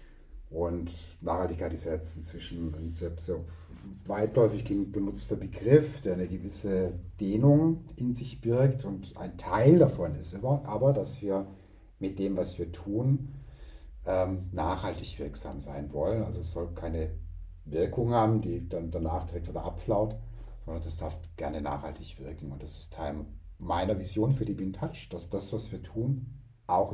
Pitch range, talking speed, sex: 80-105 Hz, 150 wpm, male